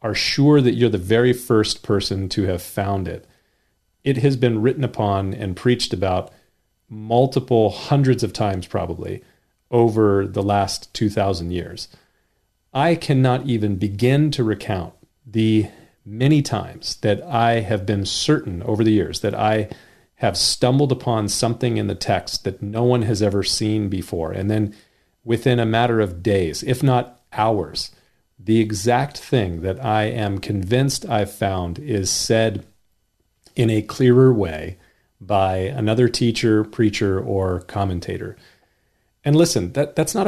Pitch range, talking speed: 100-120 Hz, 145 wpm